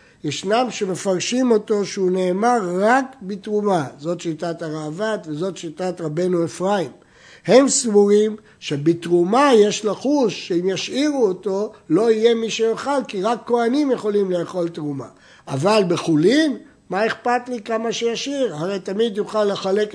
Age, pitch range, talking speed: 60-79, 170-225 Hz, 130 wpm